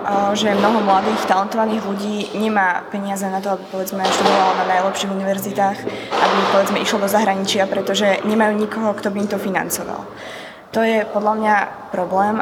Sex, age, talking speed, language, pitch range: female, 20-39, 155 wpm, Slovak, 190-210 Hz